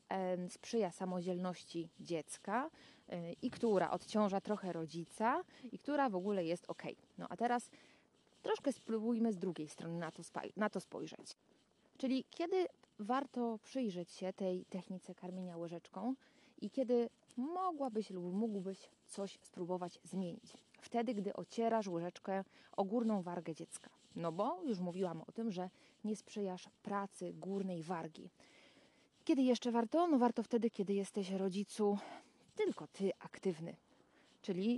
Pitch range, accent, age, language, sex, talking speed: 175-230 Hz, native, 20-39, Polish, female, 130 wpm